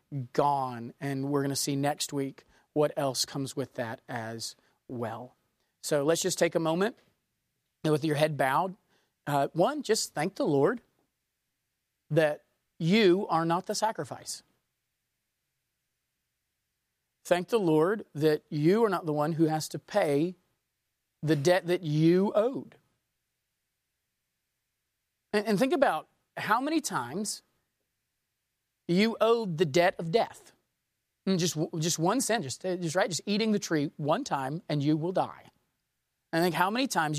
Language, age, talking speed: English, 40-59, 150 wpm